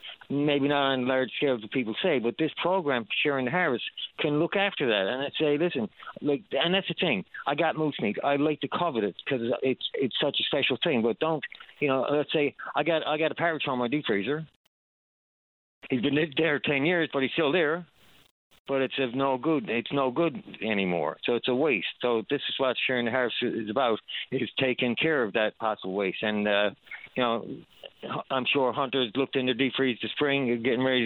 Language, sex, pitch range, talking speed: English, male, 115-145 Hz, 215 wpm